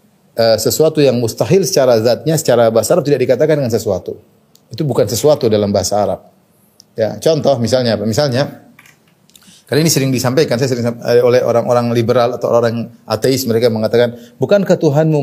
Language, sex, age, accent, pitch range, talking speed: Indonesian, male, 30-49, native, 130-180 Hz, 150 wpm